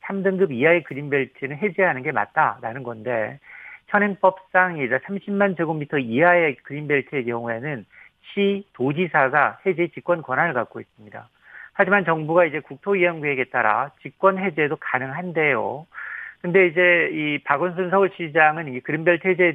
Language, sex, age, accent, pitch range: Korean, male, 40-59, native, 135-185 Hz